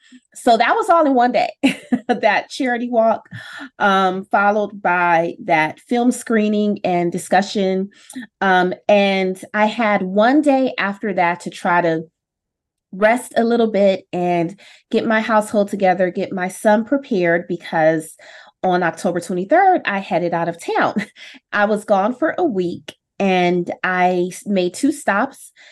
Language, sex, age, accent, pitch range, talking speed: English, female, 20-39, American, 180-225 Hz, 145 wpm